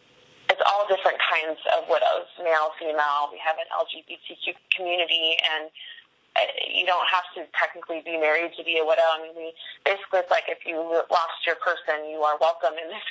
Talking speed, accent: 180 wpm, American